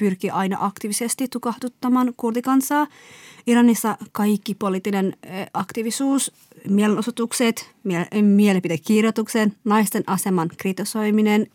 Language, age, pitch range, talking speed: Finnish, 30-49, 190-230 Hz, 75 wpm